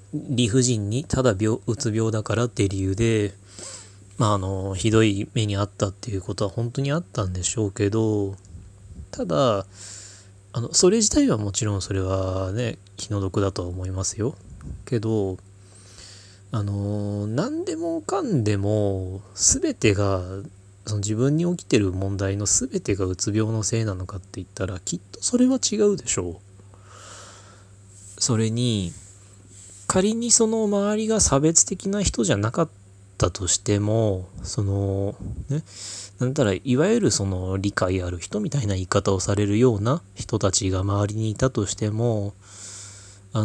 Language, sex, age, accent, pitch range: Japanese, male, 20-39, native, 100-115 Hz